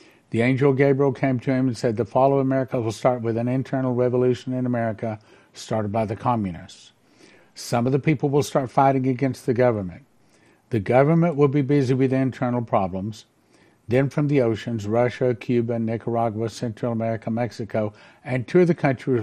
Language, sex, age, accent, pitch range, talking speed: English, male, 50-69, American, 110-135 Hz, 180 wpm